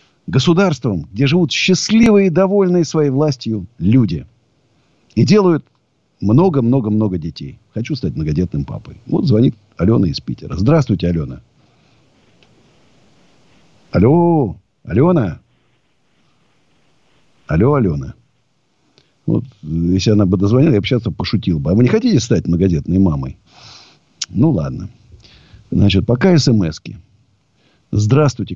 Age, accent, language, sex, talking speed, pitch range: 50-69, native, Russian, male, 105 wpm, 95-140 Hz